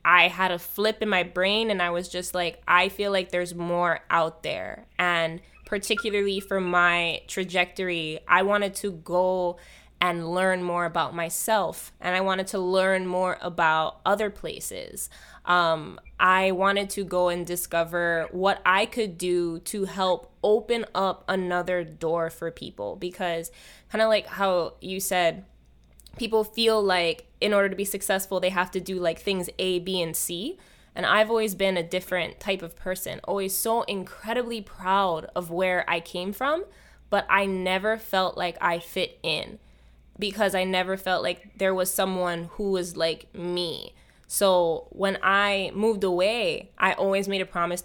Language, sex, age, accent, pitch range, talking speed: English, female, 20-39, American, 175-195 Hz, 170 wpm